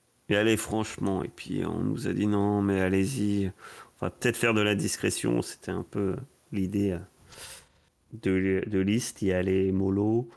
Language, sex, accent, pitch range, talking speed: French, male, French, 95-115 Hz, 170 wpm